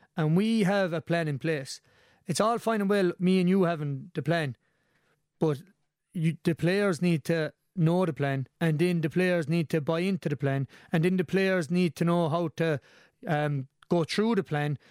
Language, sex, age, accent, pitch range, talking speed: English, male, 30-49, Irish, 160-190 Hz, 200 wpm